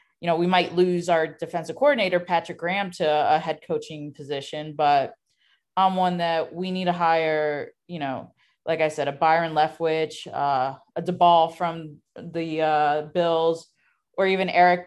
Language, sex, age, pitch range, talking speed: English, female, 20-39, 150-175 Hz, 170 wpm